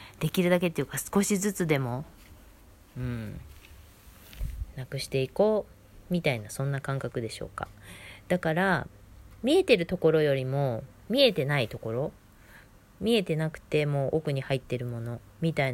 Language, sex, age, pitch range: Japanese, female, 20-39, 105-170 Hz